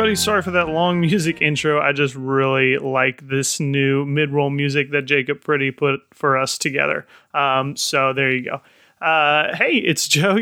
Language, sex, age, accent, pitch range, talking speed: English, male, 30-49, American, 135-165 Hz, 175 wpm